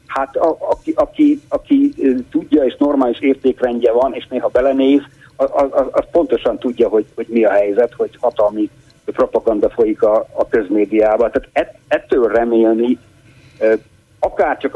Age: 60-79